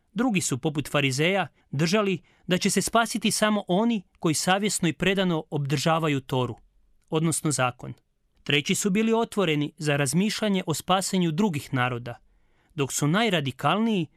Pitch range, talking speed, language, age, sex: 145-185 Hz, 135 wpm, Croatian, 30-49, male